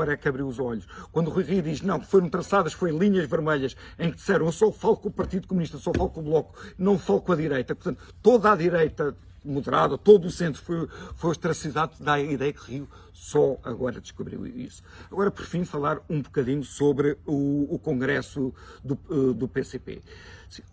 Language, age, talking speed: Portuguese, 50-69, 195 wpm